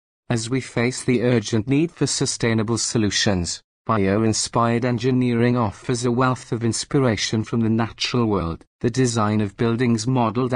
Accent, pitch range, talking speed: British, 110-130 Hz, 140 wpm